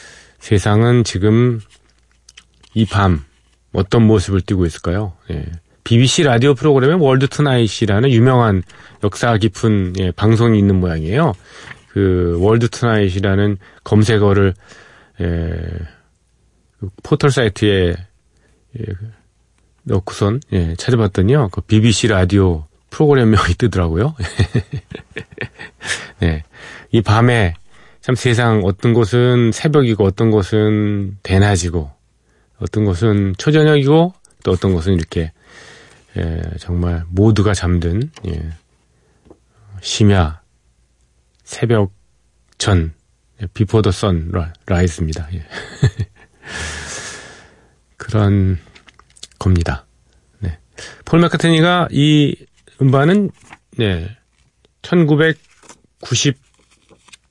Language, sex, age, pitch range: Korean, male, 40-59, 85-115 Hz